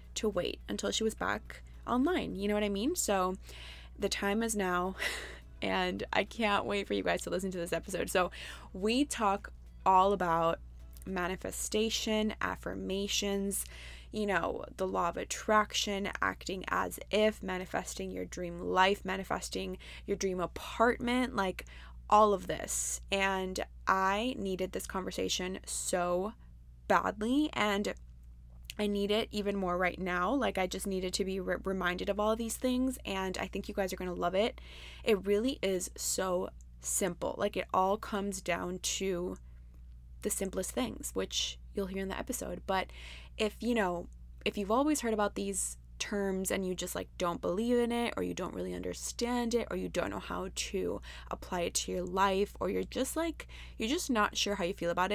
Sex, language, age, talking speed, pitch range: female, English, 20-39, 175 wpm, 170-210 Hz